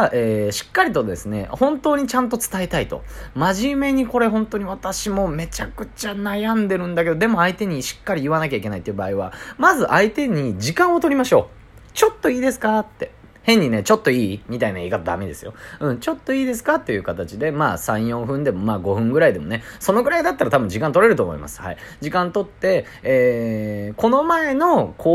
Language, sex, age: Japanese, male, 30-49